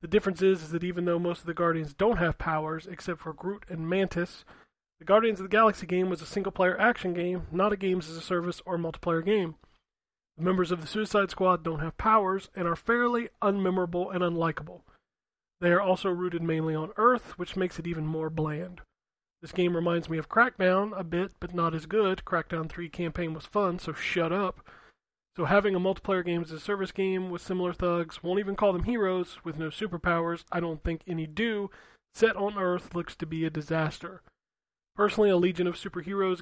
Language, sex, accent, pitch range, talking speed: English, male, American, 170-195 Hz, 205 wpm